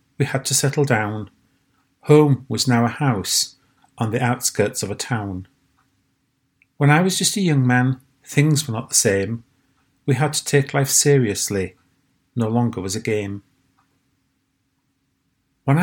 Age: 40-59